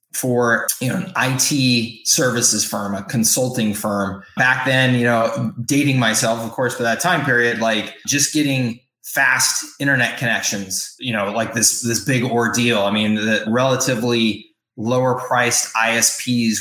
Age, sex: 20-39, male